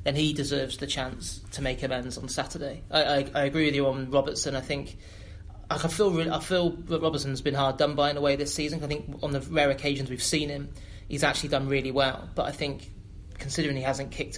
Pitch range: 130-145 Hz